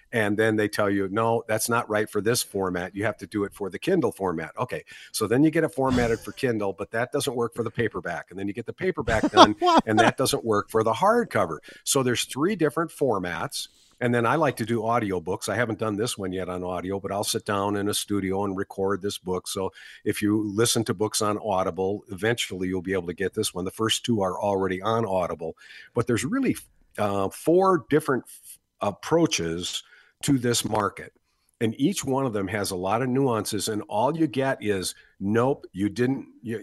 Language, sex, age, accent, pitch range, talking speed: English, male, 50-69, American, 100-135 Hz, 220 wpm